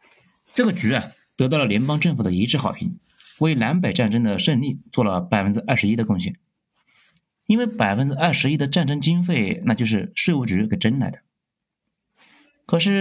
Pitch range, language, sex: 115-190 Hz, Chinese, male